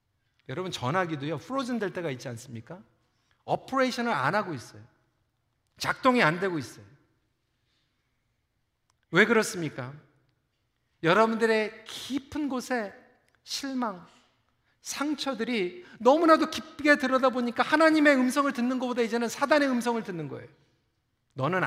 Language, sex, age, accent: Korean, male, 40-59, native